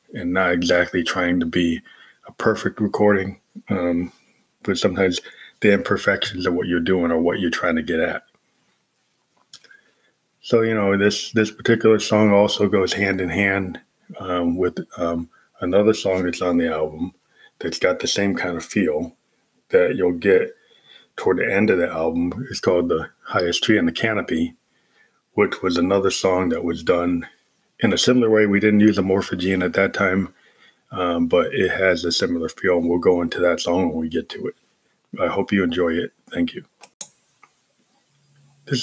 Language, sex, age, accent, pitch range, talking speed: English, male, 20-39, American, 90-110 Hz, 175 wpm